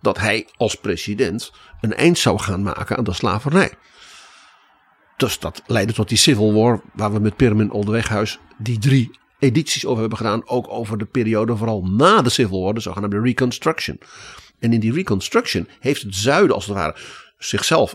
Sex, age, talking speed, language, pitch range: male, 50-69, 175 wpm, Dutch, 105-145 Hz